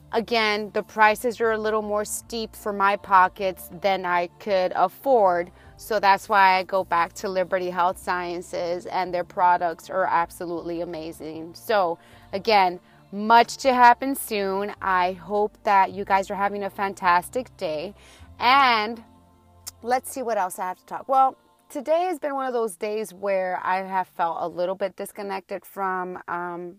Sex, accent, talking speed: female, American, 165 wpm